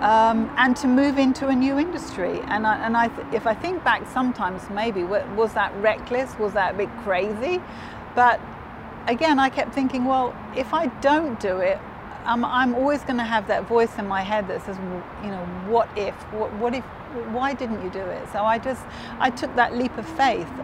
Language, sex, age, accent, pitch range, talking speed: English, female, 40-59, British, 215-255 Hz, 200 wpm